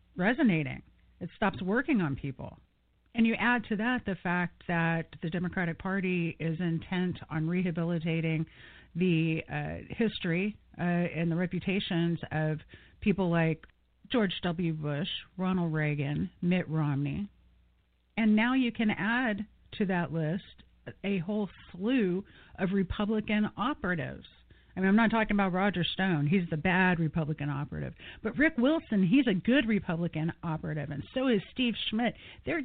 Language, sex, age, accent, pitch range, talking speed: English, female, 40-59, American, 165-210 Hz, 145 wpm